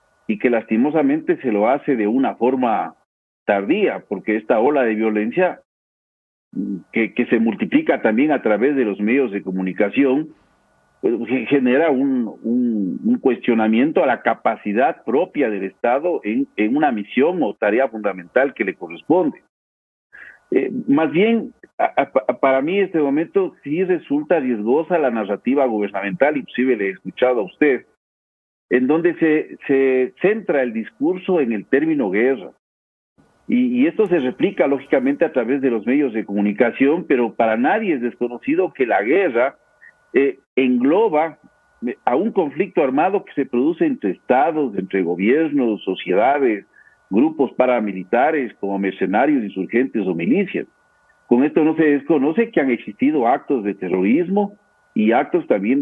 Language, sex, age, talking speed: English, male, 50-69, 150 wpm